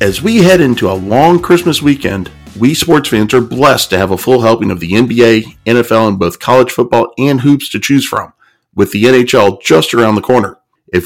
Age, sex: 50-69, male